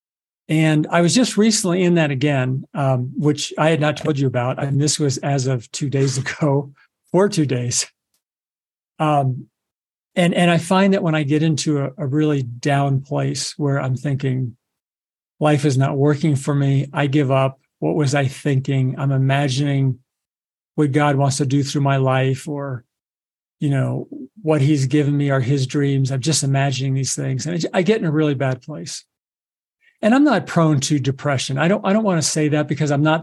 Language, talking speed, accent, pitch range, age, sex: English, 195 wpm, American, 140-165 Hz, 50-69, male